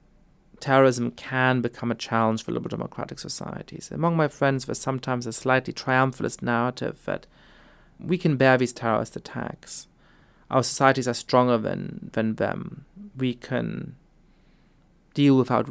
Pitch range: 120-160 Hz